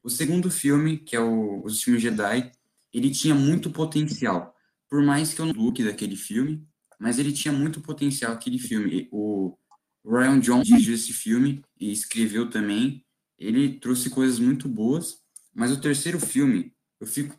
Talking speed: 175 wpm